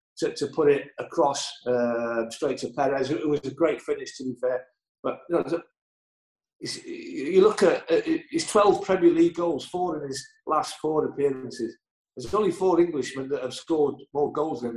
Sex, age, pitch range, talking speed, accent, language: male, 50-69, 140-175 Hz, 195 wpm, British, English